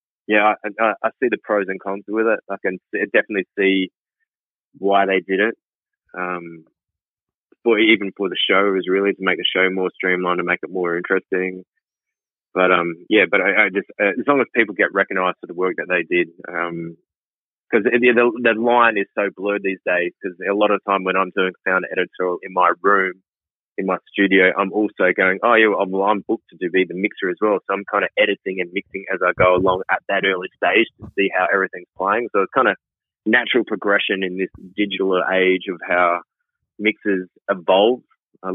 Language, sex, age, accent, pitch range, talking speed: English, male, 20-39, Australian, 90-105 Hz, 215 wpm